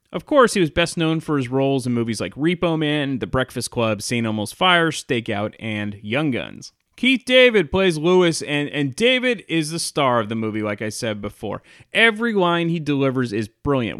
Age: 30-49